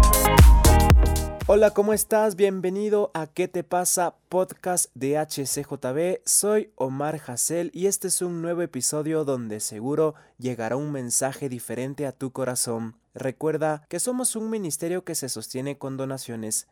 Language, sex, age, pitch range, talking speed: Spanish, male, 20-39, 125-170 Hz, 140 wpm